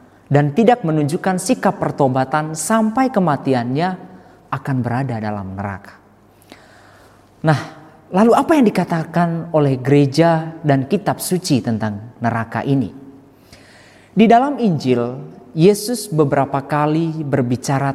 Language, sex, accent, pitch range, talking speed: Indonesian, male, native, 120-175 Hz, 105 wpm